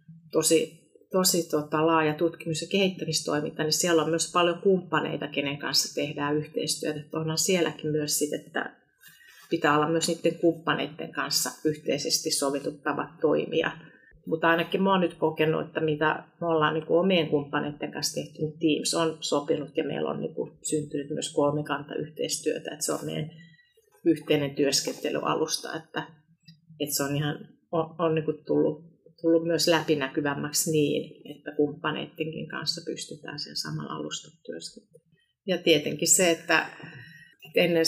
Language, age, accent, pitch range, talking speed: Finnish, 30-49, native, 155-165 Hz, 145 wpm